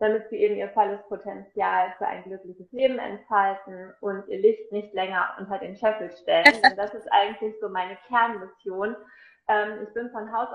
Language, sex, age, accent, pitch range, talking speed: German, female, 20-39, German, 210-255 Hz, 180 wpm